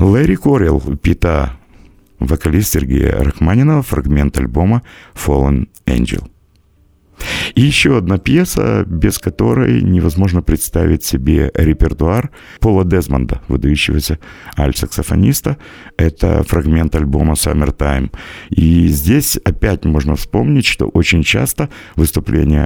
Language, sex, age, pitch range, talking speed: Russian, male, 50-69, 75-105 Hz, 100 wpm